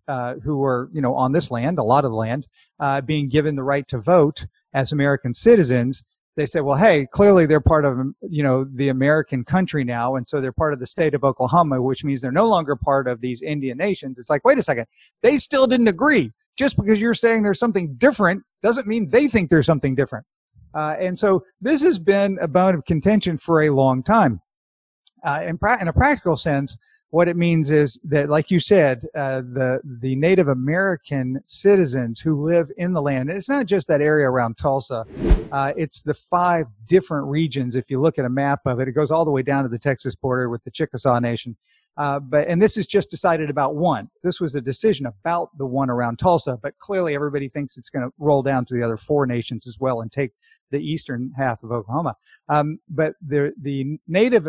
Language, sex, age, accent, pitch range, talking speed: English, male, 50-69, American, 130-175 Hz, 220 wpm